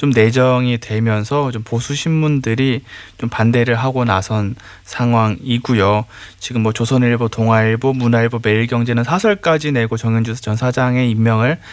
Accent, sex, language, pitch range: native, male, Korean, 110-145 Hz